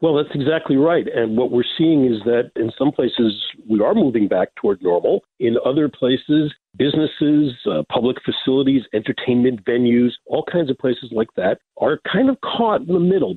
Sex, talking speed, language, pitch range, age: male, 185 wpm, English, 130-175 Hz, 50-69